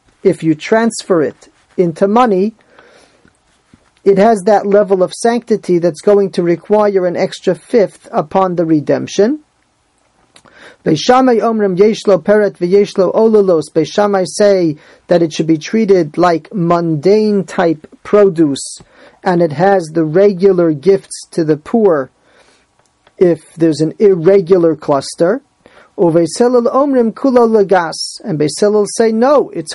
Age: 40-59